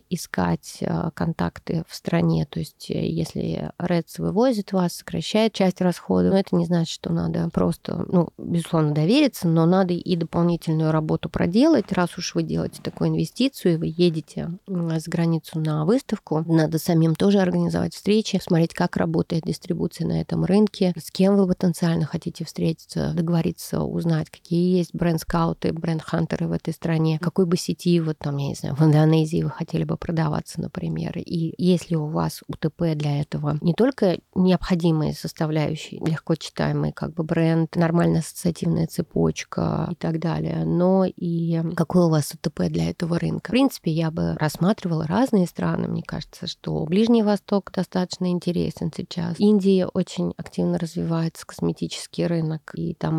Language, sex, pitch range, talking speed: Russian, female, 160-180 Hz, 155 wpm